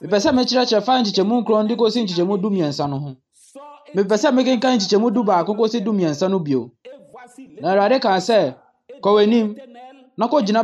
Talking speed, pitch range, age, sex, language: 225 wpm, 180-255 Hz, 20-39, male, French